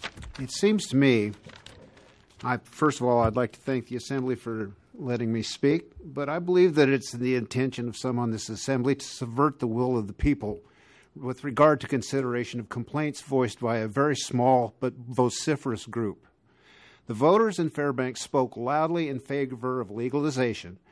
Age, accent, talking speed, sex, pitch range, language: 50-69, American, 170 wpm, male, 120-150 Hz, English